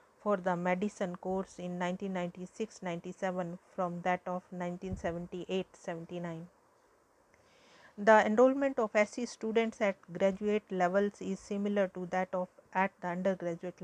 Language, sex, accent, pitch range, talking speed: English, female, Indian, 180-205 Hz, 120 wpm